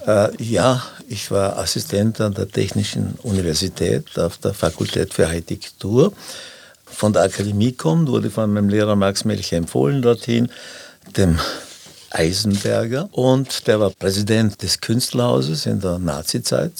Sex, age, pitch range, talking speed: male, 60-79, 100-120 Hz, 130 wpm